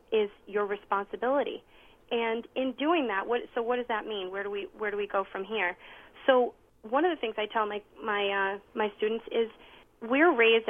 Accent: American